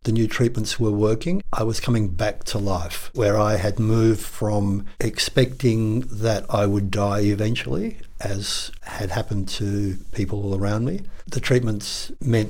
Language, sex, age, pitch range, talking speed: English, male, 60-79, 100-120 Hz, 160 wpm